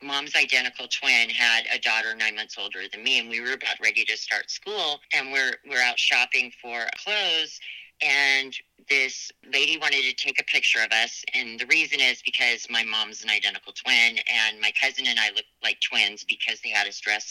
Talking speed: 205 wpm